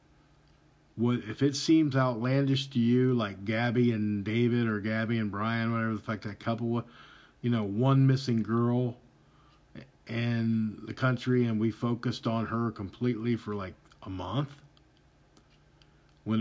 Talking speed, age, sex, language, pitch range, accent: 145 wpm, 50-69, male, English, 110-130 Hz, American